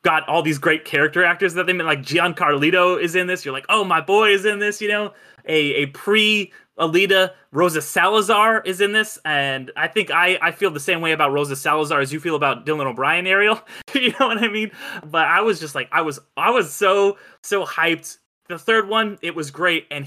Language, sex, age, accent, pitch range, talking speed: English, male, 20-39, American, 150-200 Hz, 225 wpm